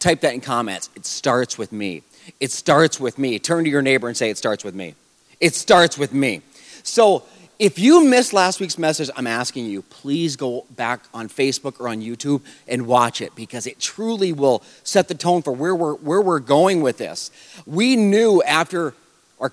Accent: American